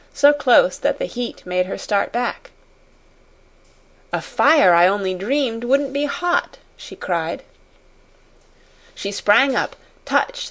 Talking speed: 130 wpm